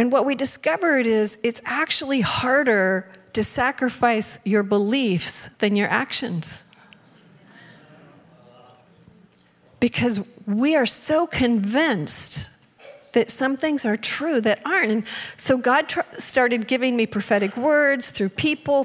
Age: 40-59